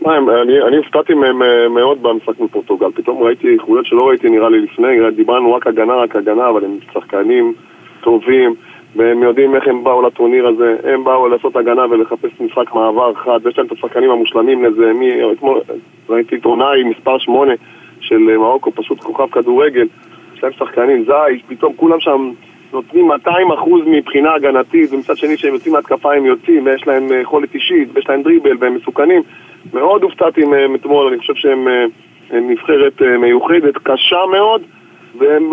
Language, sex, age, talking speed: Hebrew, male, 20-39, 145 wpm